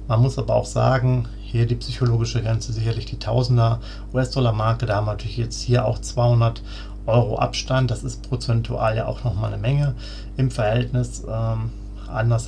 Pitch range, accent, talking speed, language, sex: 105-125 Hz, German, 170 wpm, German, male